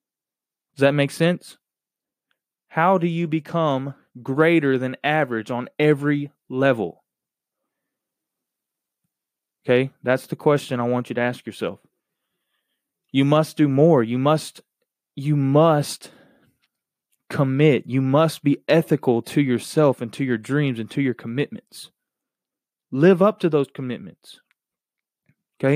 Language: English